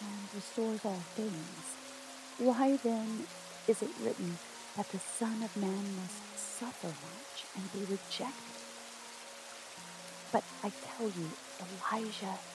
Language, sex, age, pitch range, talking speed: English, female, 40-59, 180-225 Hz, 120 wpm